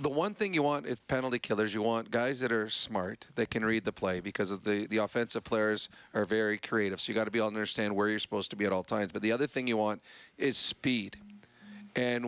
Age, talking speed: 40-59, 260 wpm